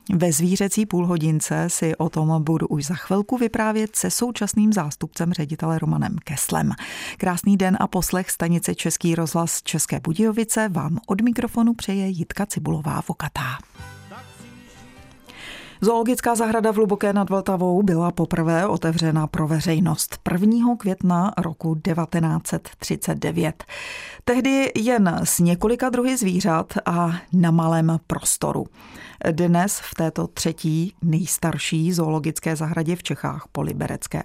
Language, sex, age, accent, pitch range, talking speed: Czech, female, 30-49, native, 160-200 Hz, 115 wpm